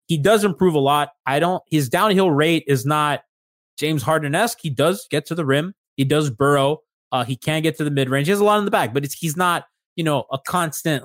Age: 20-39